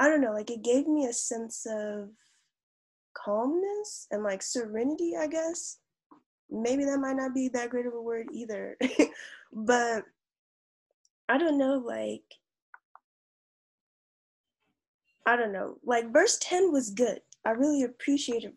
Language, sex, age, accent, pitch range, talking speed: English, female, 10-29, American, 210-270 Hz, 140 wpm